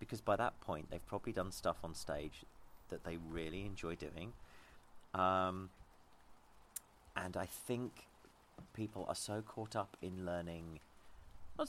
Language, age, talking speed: English, 30-49, 140 wpm